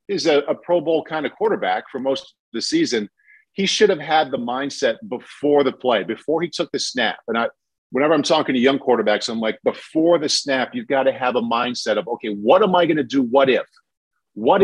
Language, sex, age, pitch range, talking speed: English, male, 50-69, 125-160 Hz, 235 wpm